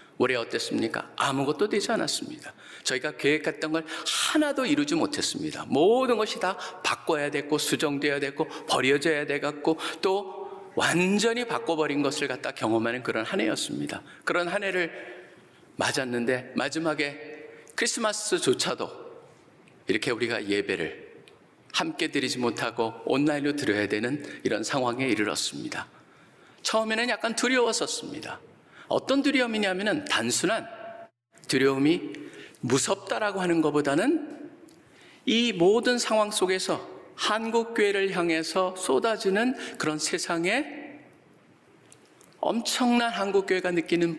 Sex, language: male, Korean